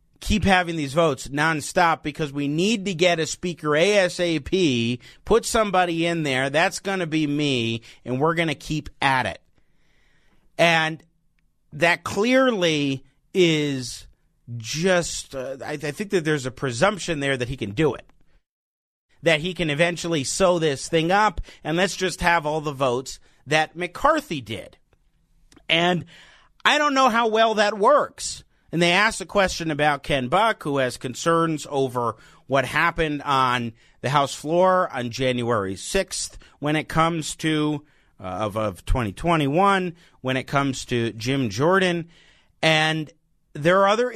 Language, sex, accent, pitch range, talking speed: English, male, American, 135-180 Hz, 155 wpm